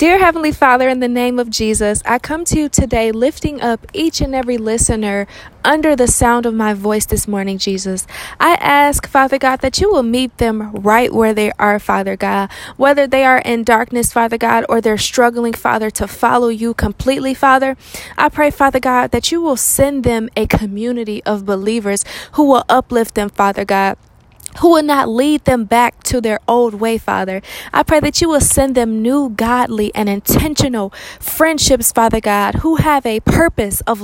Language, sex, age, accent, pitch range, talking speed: English, female, 20-39, American, 215-265 Hz, 190 wpm